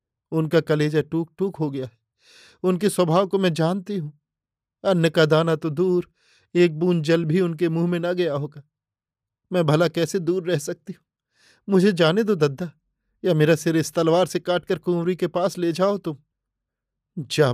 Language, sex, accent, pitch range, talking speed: Hindi, male, native, 120-165 Hz, 180 wpm